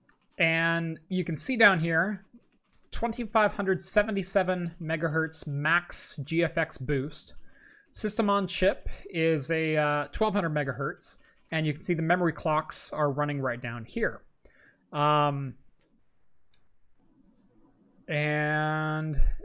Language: English